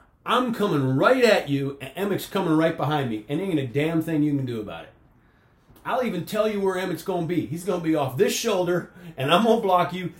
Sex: male